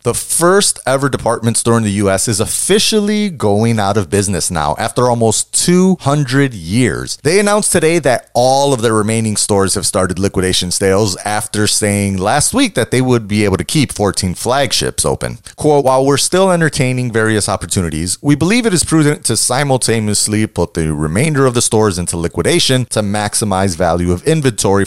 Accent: American